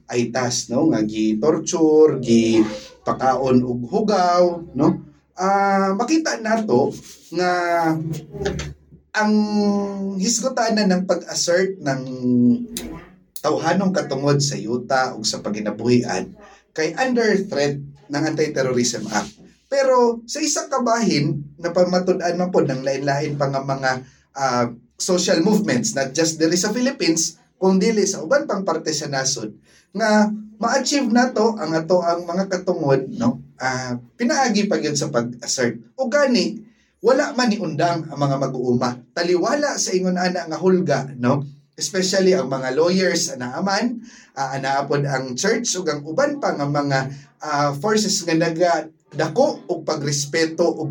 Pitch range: 135-200 Hz